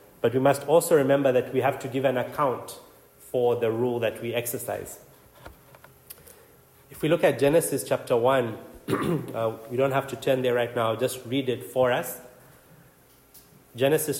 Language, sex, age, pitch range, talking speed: English, male, 30-49, 120-140 Hz, 170 wpm